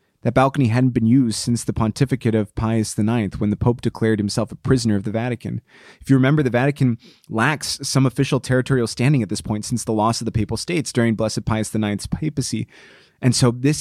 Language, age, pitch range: English, 30-49, 110-130 Hz